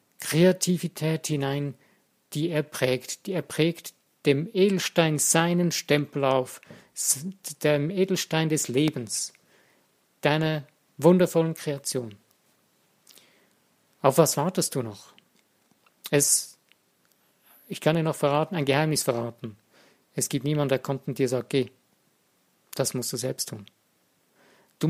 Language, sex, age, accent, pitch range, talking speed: German, male, 50-69, German, 140-170 Hz, 120 wpm